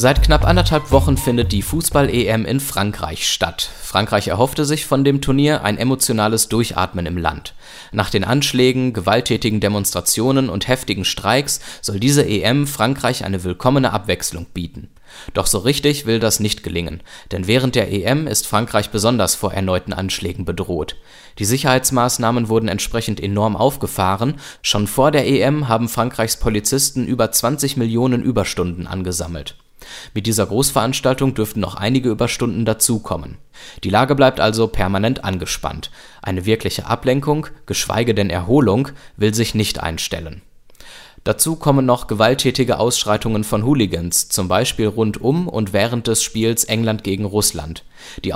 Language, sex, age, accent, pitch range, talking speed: German, male, 20-39, German, 100-130 Hz, 145 wpm